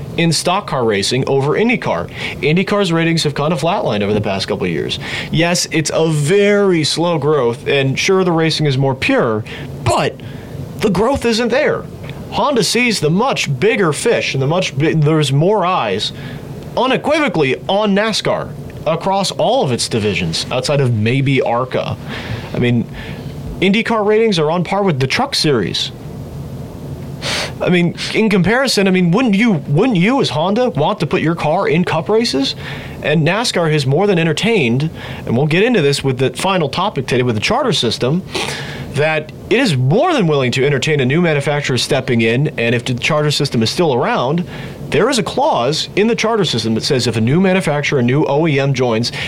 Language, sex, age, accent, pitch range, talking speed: English, male, 30-49, American, 135-185 Hz, 185 wpm